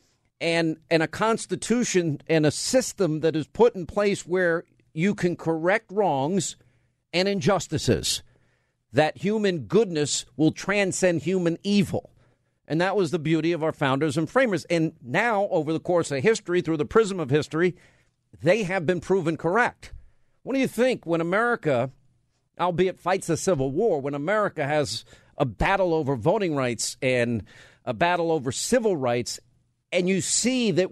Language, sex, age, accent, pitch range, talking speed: English, male, 50-69, American, 140-185 Hz, 160 wpm